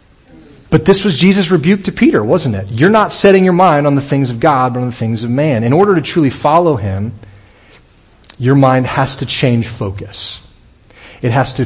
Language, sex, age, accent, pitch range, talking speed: English, male, 40-59, American, 105-130 Hz, 205 wpm